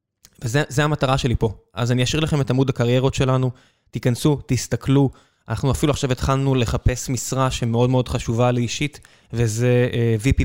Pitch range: 115-140 Hz